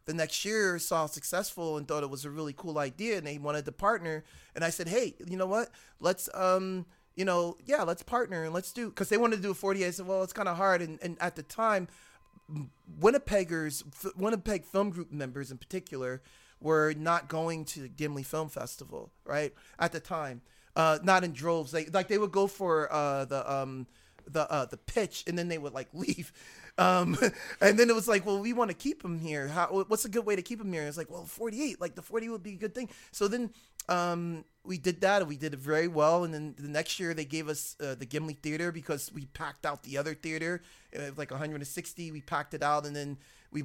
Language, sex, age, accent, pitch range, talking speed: English, male, 30-49, American, 150-185 Hz, 240 wpm